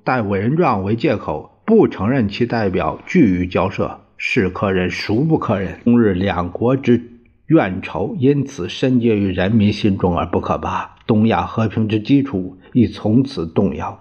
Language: Chinese